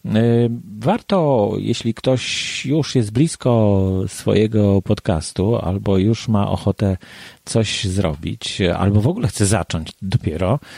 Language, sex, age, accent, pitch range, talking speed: Polish, male, 30-49, native, 90-110 Hz, 110 wpm